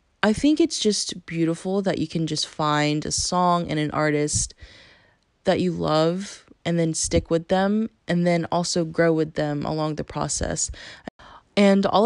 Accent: American